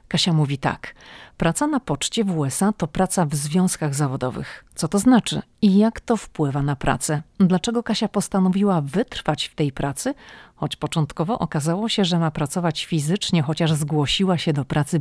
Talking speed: 170 wpm